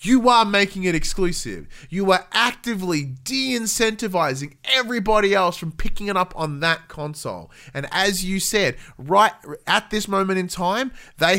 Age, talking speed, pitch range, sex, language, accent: 20-39, 155 wpm, 125-175 Hz, male, English, Australian